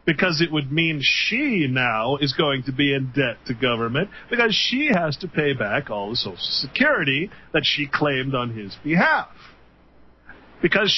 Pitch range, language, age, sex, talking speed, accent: 110-175 Hz, English, 40-59, male, 170 wpm, American